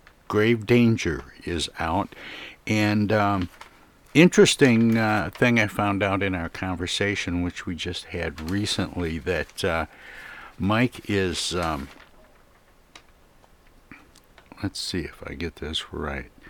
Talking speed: 115 wpm